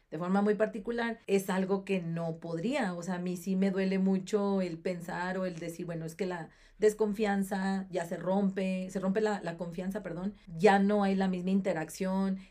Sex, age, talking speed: female, 40-59, 200 wpm